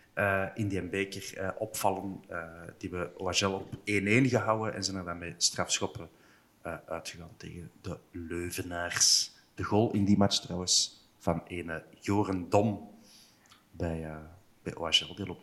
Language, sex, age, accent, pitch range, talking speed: Dutch, male, 40-59, Dutch, 90-110 Hz, 150 wpm